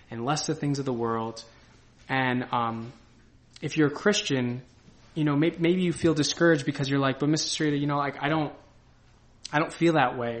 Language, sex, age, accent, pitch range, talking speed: English, male, 20-39, American, 120-150 Hz, 210 wpm